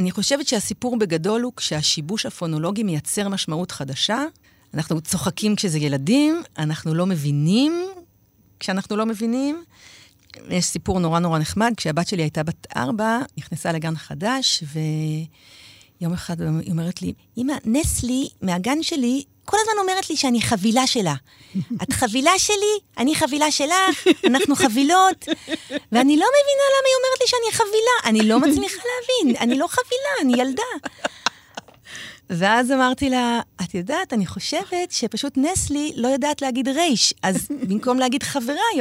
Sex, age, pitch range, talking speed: female, 50-69, 175-285 Hz, 145 wpm